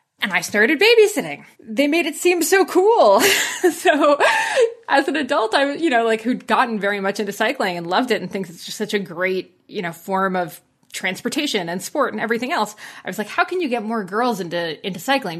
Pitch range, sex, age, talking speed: 190-275 Hz, female, 20-39, 220 wpm